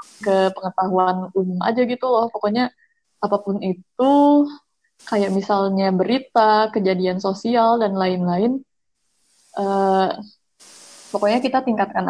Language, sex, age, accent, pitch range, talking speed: Indonesian, female, 20-39, native, 195-235 Hz, 100 wpm